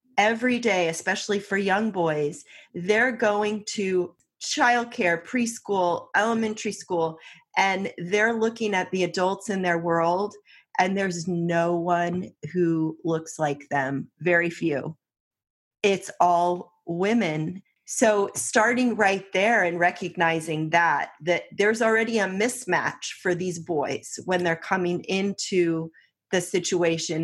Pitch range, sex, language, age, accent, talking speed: 170-210 Hz, female, English, 30-49, American, 125 wpm